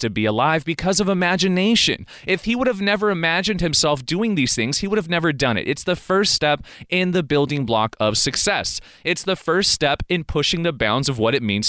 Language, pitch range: English, 120-185 Hz